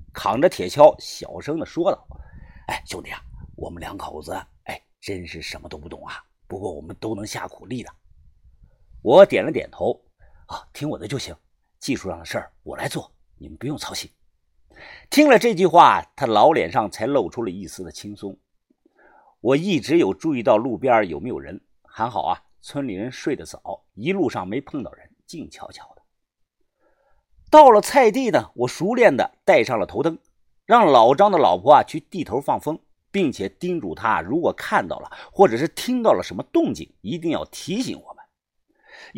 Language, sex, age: Chinese, male, 50-69